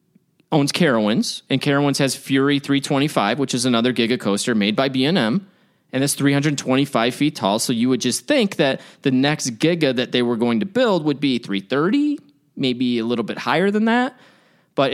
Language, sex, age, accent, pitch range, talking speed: English, male, 20-39, American, 135-195 Hz, 185 wpm